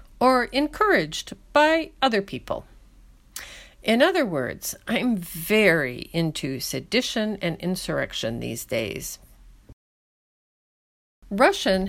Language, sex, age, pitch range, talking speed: English, female, 50-69, 155-225 Hz, 85 wpm